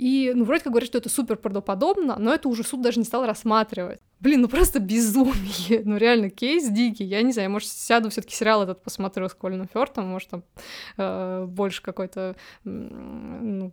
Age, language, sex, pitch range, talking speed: 20-39, Russian, female, 205-250 Hz, 190 wpm